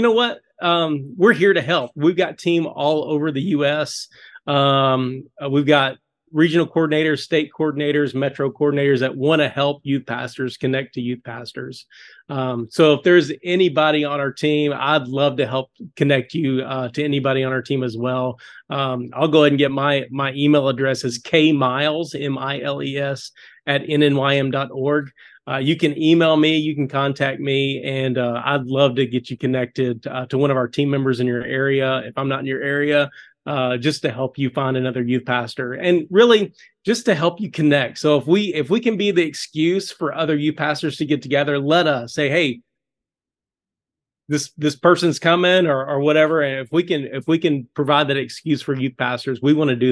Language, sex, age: English, male, 30-49